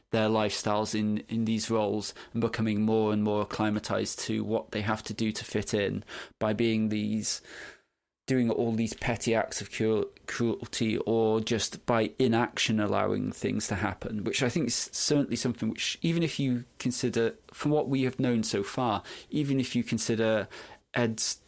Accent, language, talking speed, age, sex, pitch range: British, English, 175 wpm, 20-39, male, 105-120 Hz